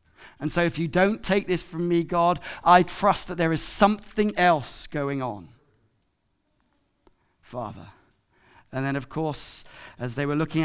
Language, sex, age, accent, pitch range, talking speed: English, male, 30-49, British, 145-175 Hz, 160 wpm